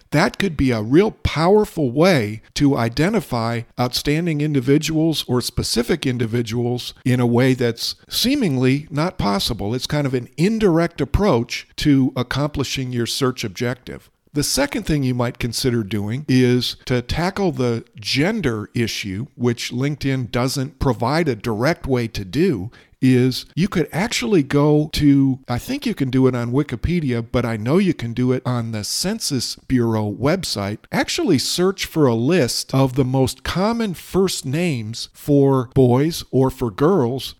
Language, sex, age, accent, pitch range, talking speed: English, male, 50-69, American, 120-155 Hz, 155 wpm